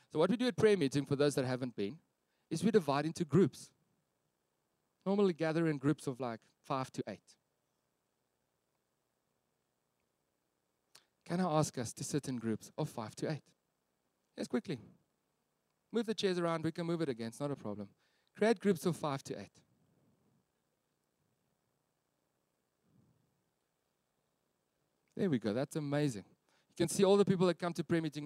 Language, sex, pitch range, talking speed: English, male, 135-185 Hz, 160 wpm